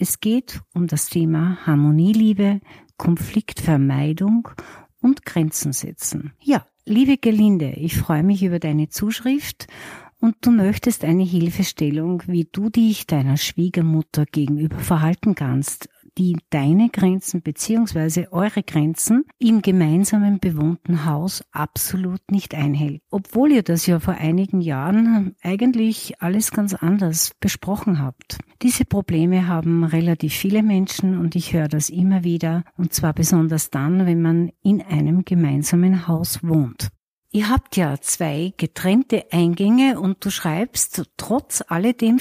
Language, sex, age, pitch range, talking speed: German, female, 60-79, 160-215 Hz, 130 wpm